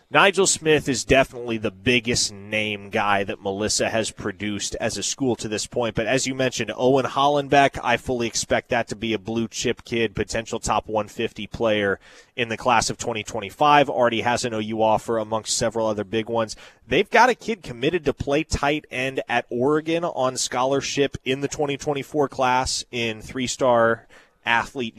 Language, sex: English, male